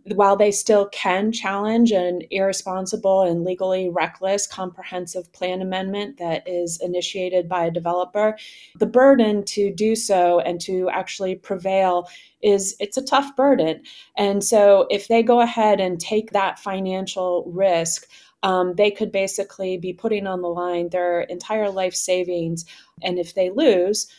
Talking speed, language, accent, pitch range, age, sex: 150 wpm, English, American, 175-200 Hz, 30-49, female